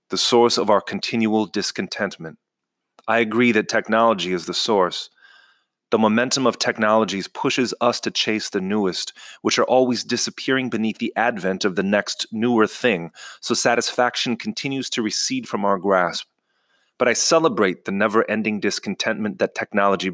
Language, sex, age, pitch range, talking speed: English, male, 30-49, 100-125 Hz, 150 wpm